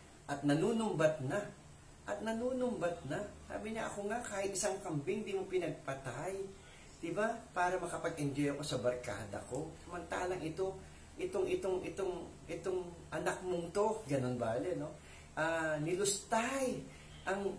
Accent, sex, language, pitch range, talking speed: Filipino, male, English, 120-185 Hz, 135 wpm